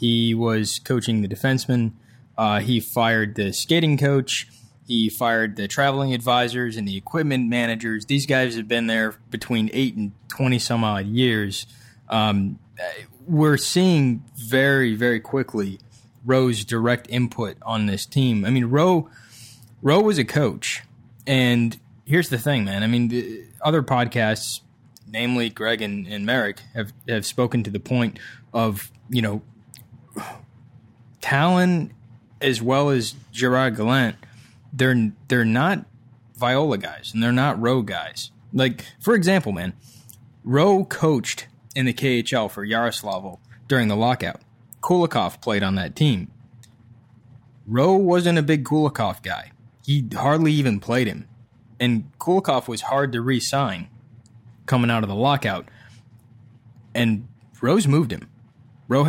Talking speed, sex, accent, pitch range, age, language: 135 wpm, male, American, 115-130 Hz, 20-39, English